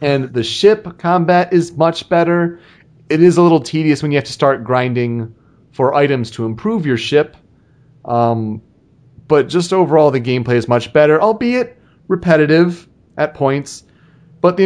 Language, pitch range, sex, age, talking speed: English, 120-160 Hz, male, 30-49, 160 wpm